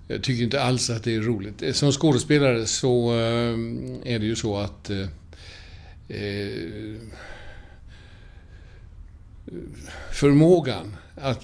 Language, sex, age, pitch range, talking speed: Swedish, male, 50-69, 95-125 Hz, 95 wpm